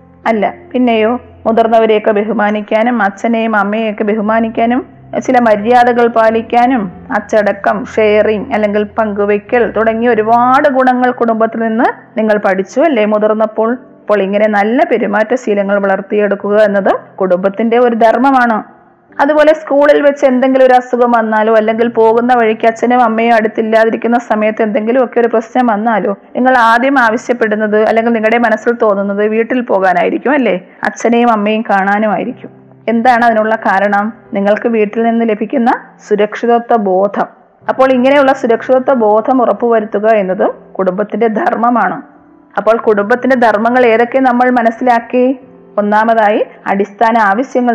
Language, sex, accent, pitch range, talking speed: Malayalam, female, native, 215-245 Hz, 115 wpm